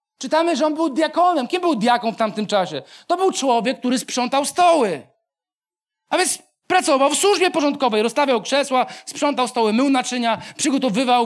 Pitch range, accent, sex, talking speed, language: 215-300 Hz, native, male, 160 wpm, Polish